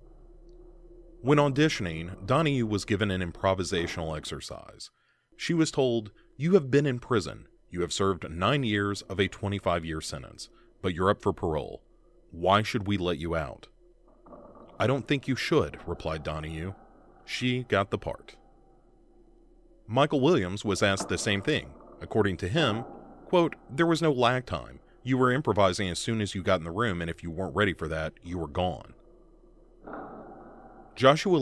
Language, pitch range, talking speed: English, 85-135 Hz, 160 wpm